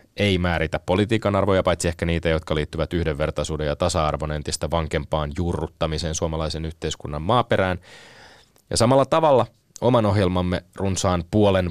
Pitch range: 80-100 Hz